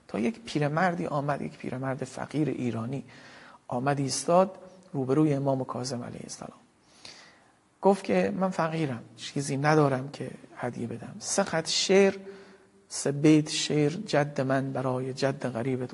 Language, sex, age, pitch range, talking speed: Persian, male, 40-59, 125-155 Hz, 130 wpm